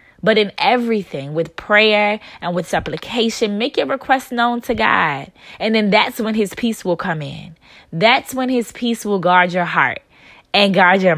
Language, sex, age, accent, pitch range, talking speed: English, female, 20-39, American, 170-220 Hz, 180 wpm